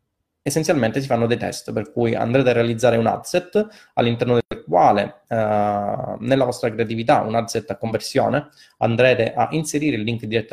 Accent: native